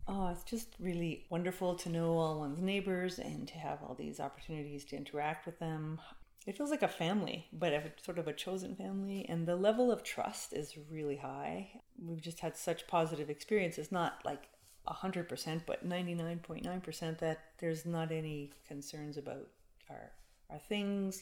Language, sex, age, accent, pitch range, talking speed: English, female, 30-49, American, 155-185 Hz, 175 wpm